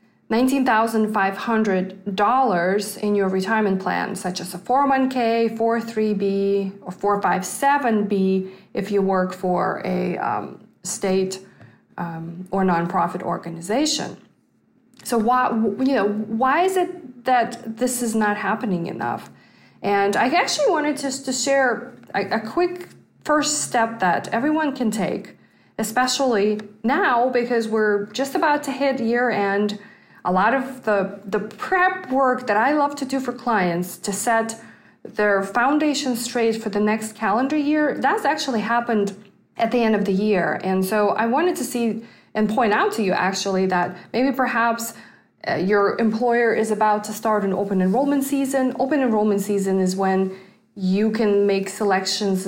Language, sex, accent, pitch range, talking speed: English, female, American, 195-255 Hz, 150 wpm